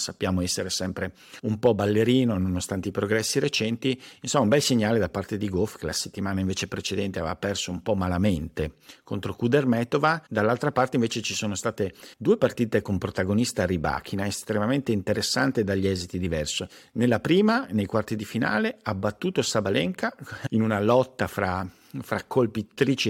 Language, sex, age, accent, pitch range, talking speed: Italian, male, 50-69, native, 100-125 Hz, 160 wpm